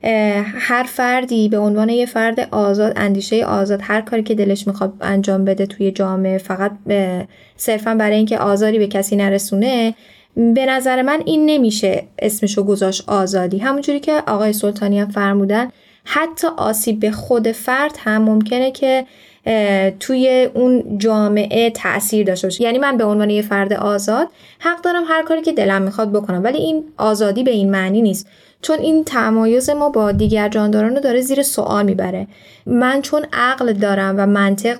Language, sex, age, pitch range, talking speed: Persian, female, 10-29, 200-250 Hz, 165 wpm